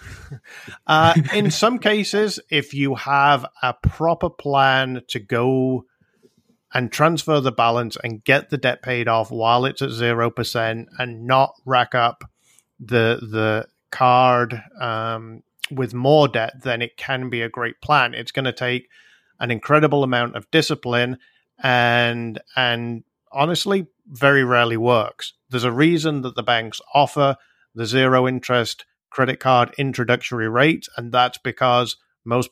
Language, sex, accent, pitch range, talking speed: English, male, British, 120-140 Hz, 140 wpm